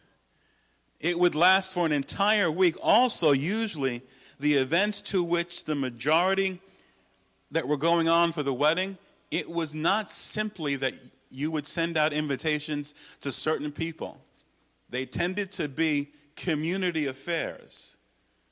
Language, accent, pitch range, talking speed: English, American, 135-170 Hz, 135 wpm